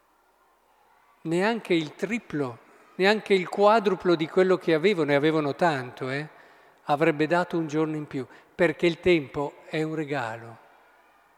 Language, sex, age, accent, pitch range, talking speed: Italian, male, 50-69, native, 145-210 Hz, 135 wpm